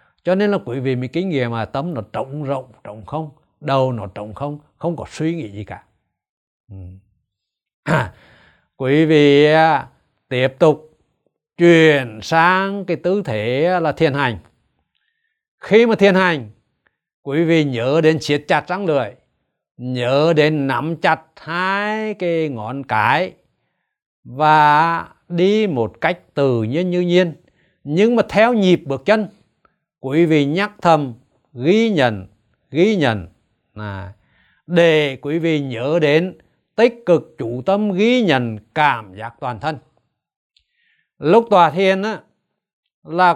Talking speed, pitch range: 140 wpm, 125-180 Hz